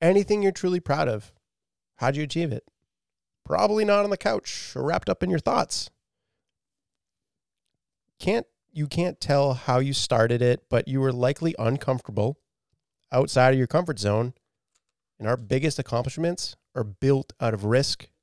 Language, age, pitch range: English, 30-49, 115-140 Hz